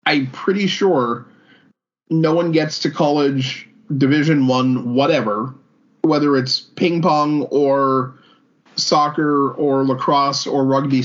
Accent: American